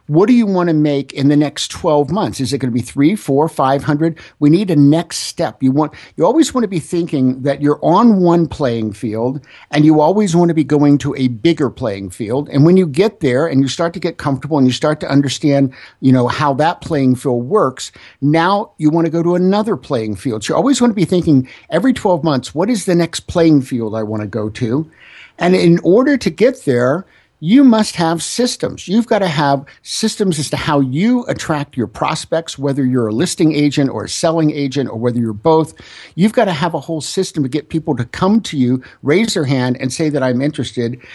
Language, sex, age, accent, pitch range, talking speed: English, male, 50-69, American, 130-170 Hz, 235 wpm